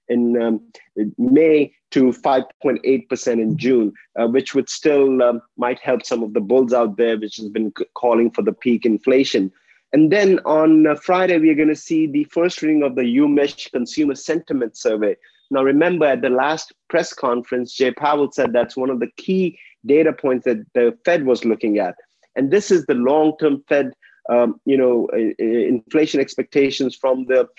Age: 30-49